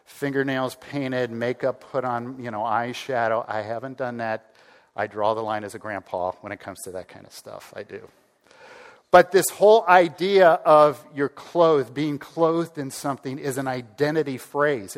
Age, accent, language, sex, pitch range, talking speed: 50-69, American, English, male, 125-170 Hz, 175 wpm